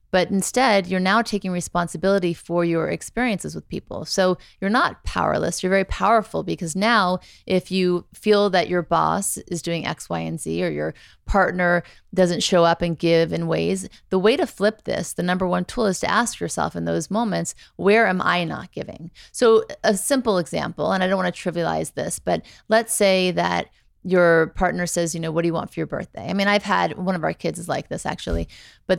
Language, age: English, 30-49